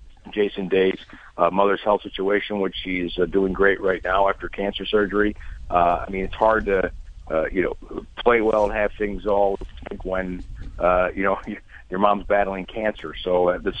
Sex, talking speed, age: male, 185 wpm, 50-69